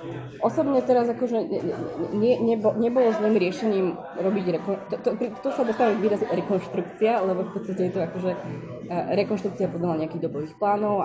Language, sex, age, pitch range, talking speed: Slovak, female, 20-39, 175-225 Hz, 165 wpm